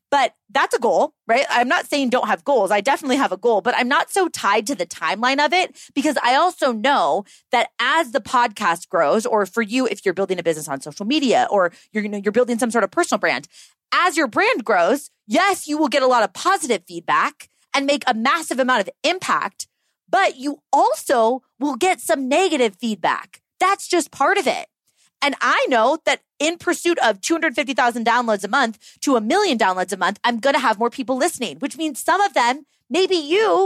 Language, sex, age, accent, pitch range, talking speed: English, female, 30-49, American, 245-345 Hz, 215 wpm